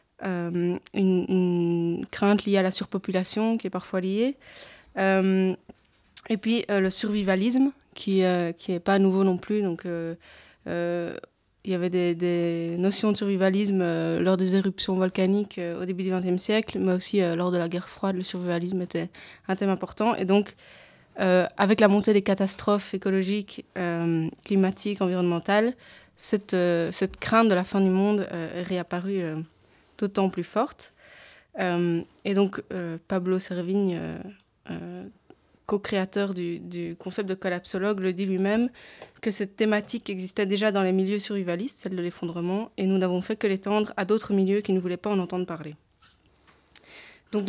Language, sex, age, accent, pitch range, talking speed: French, female, 20-39, French, 180-205 Hz, 170 wpm